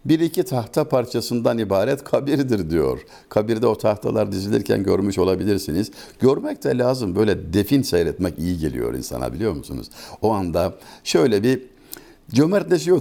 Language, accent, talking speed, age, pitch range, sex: Turkish, native, 135 wpm, 60-79, 105-145 Hz, male